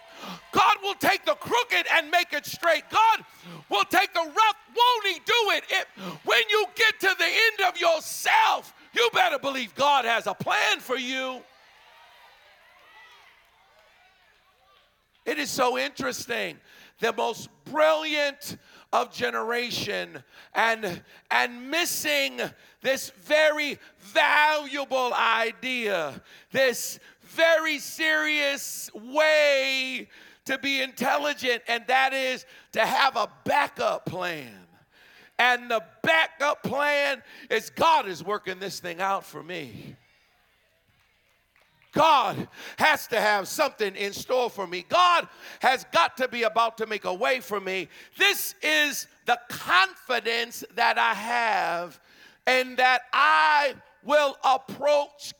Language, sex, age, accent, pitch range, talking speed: English, male, 50-69, American, 235-325 Hz, 120 wpm